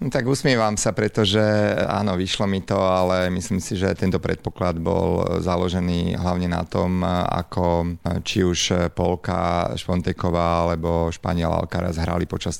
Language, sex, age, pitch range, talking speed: Slovak, male, 40-59, 85-95 Hz, 145 wpm